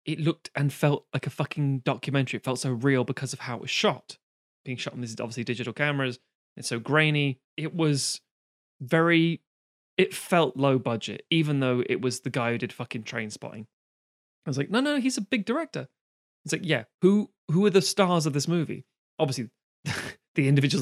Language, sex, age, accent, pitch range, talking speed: English, male, 20-39, British, 120-155 Hz, 200 wpm